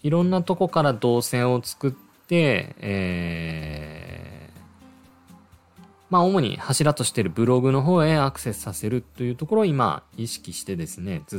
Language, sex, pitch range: Japanese, male, 95-145 Hz